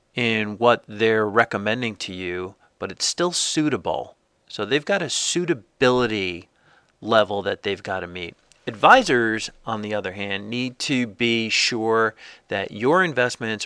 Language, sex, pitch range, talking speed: English, male, 105-130 Hz, 145 wpm